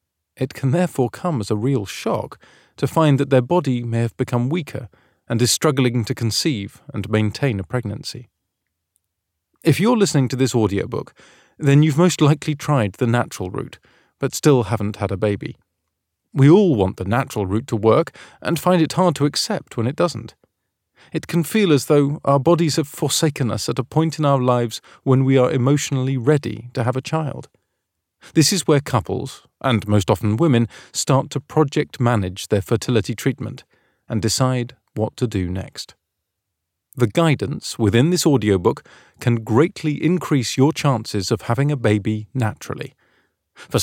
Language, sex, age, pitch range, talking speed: English, male, 40-59, 105-145 Hz, 170 wpm